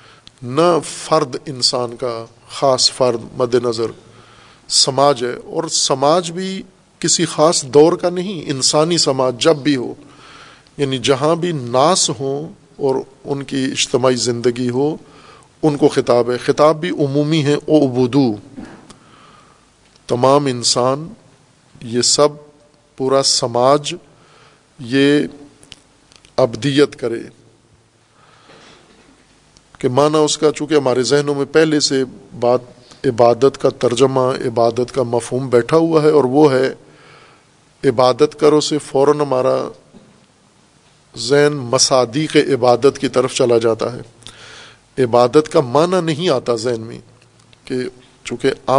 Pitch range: 125-150 Hz